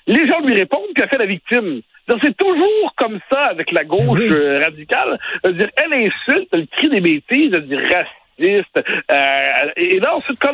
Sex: male